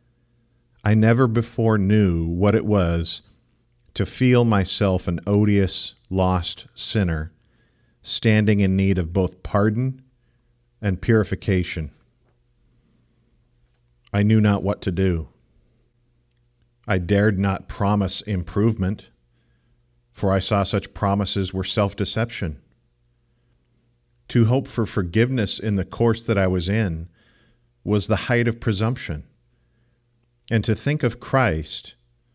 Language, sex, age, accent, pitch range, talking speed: English, male, 50-69, American, 90-115 Hz, 115 wpm